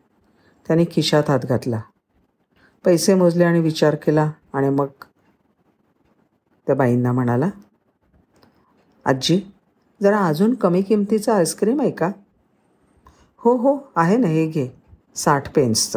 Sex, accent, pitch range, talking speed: female, native, 150-200 Hz, 110 wpm